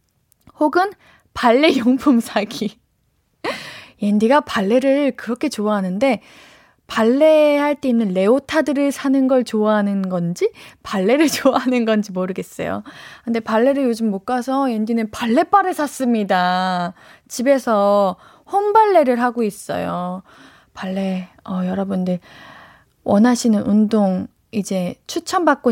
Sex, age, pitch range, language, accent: female, 20-39, 205-290 Hz, Korean, native